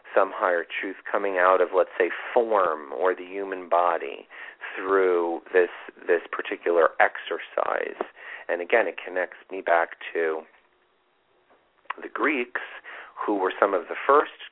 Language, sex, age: English, male, 40-59